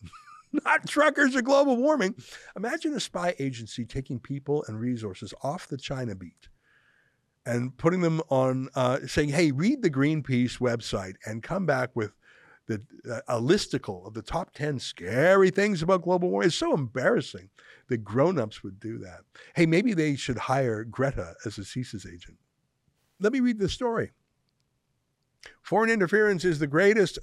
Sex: male